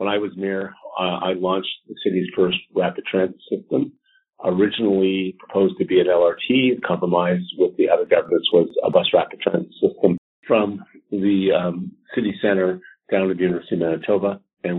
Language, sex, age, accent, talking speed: English, male, 50-69, American, 170 wpm